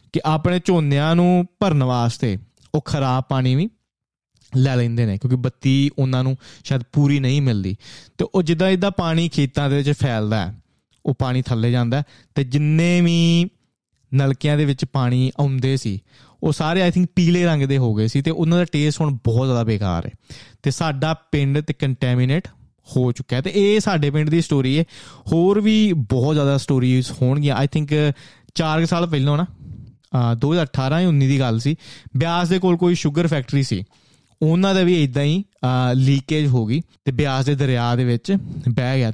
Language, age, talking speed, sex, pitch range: Punjabi, 20-39, 180 wpm, male, 125-160 Hz